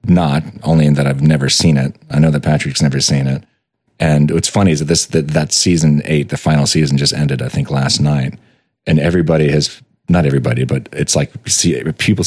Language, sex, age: English, male, 30-49